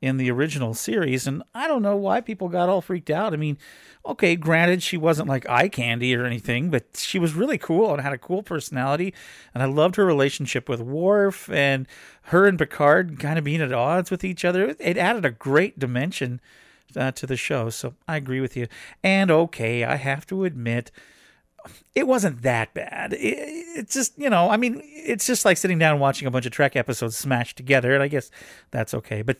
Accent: American